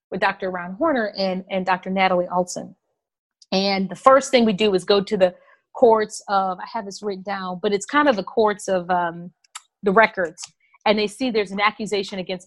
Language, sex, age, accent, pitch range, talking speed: English, female, 40-59, American, 190-265 Hz, 205 wpm